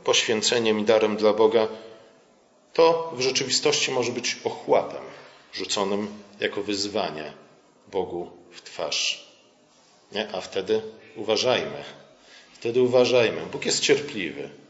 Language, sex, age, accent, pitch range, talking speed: Polish, male, 40-59, native, 100-150 Hz, 100 wpm